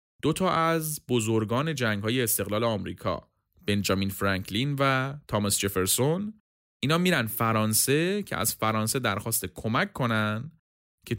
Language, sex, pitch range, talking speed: Persian, male, 105-160 Hz, 125 wpm